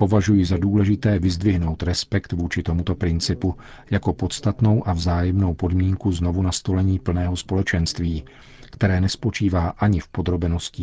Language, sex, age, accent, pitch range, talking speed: Czech, male, 40-59, native, 90-100 Hz, 120 wpm